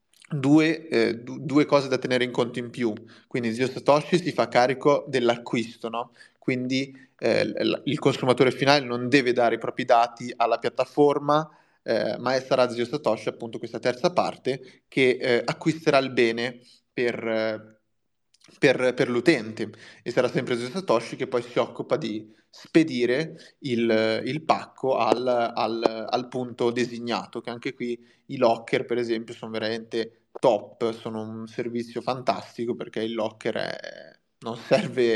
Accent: native